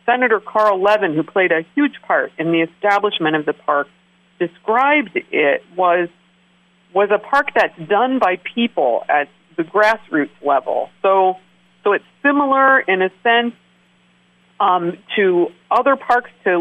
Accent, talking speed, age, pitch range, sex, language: American, 145 wpm, 50-69, 180-235 Hz, female, English